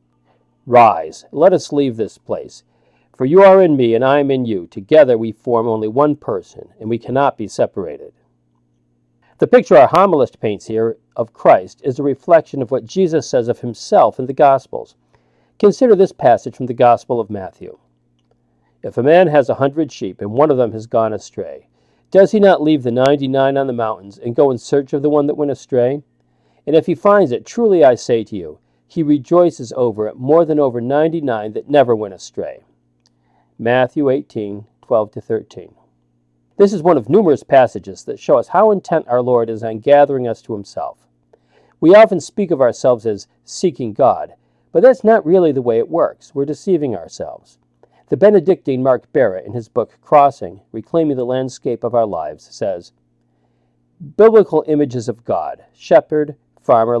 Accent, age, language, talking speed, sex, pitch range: American, 50-69, English, 185 wpm, male, 100-150 Hz